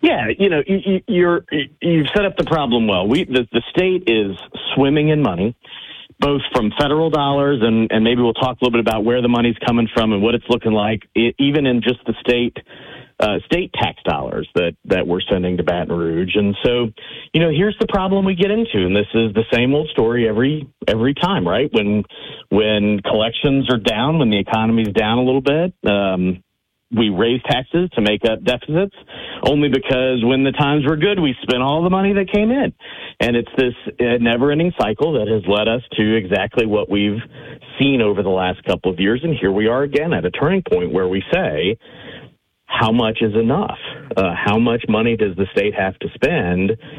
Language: English